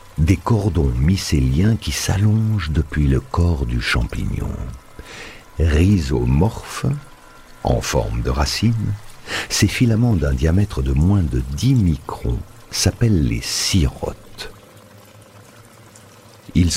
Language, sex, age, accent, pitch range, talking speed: French, male, 60-79, French, 75-110 Hz, 100 wpm